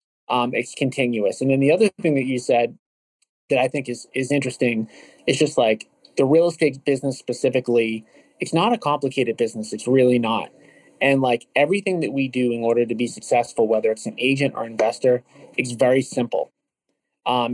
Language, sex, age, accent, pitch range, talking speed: English, male, 30-49, American, 120-140 Hz, 185 wpm